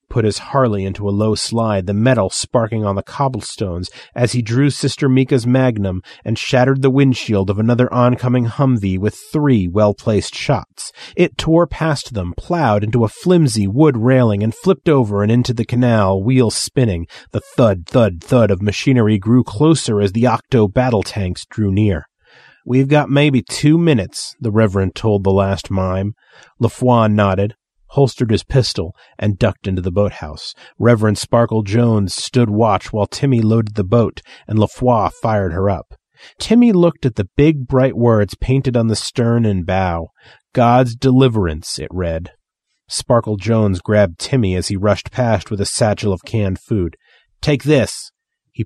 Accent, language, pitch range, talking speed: American, English, 100-130 Hz, 165 wpm